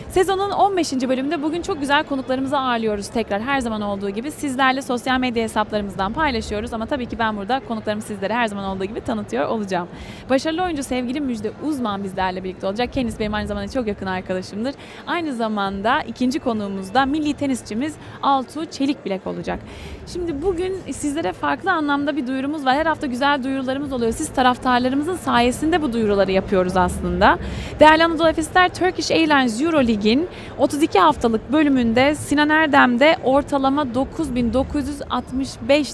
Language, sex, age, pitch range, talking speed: Turkish, female, 30-49, 220-295 Hz, 150 wpm